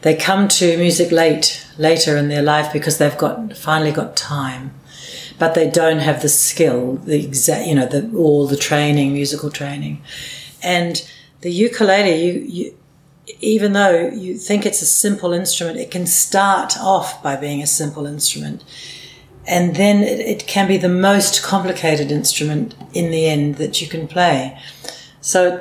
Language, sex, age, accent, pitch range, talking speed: English, female, 60-79, Australian, 145-175 Hz, 170 wpm